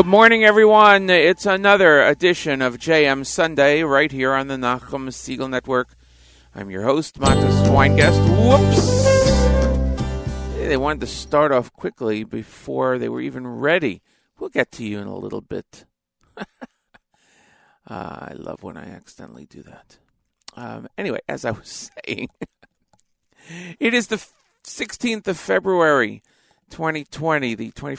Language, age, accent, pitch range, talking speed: English, 50-69, American, 110-150 Hz, 140 wpm